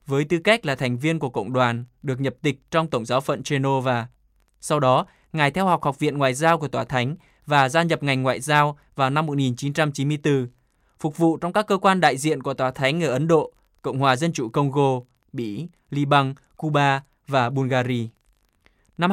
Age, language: 20-39, Vietnamese